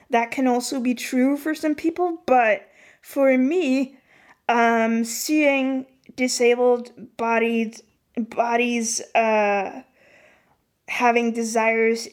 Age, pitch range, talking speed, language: 20-39, 215-245 Hz, 95 wpm, Danish